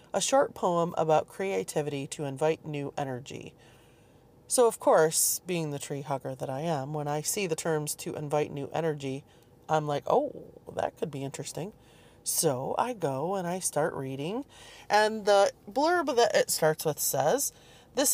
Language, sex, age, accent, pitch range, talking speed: English, female, 30-49, American, 140-185 Hz, 170 wpm